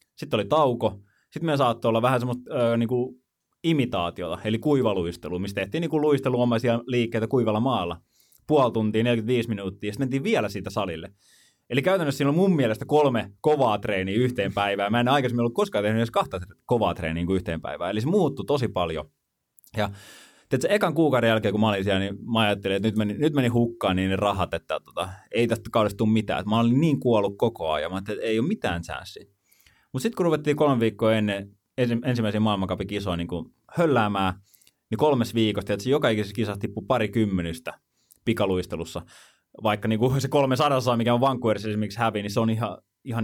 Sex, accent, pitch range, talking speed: male, native, 100-130 Hz, 180 wpm